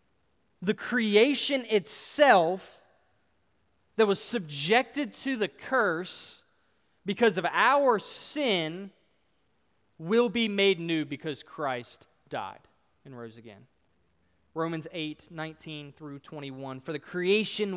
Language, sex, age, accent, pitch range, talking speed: English, male, 20-39, American, 160-210 Hz, 105 wpm